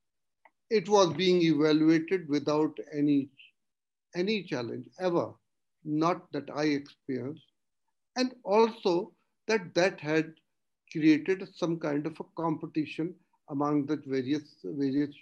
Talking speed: 110 wpm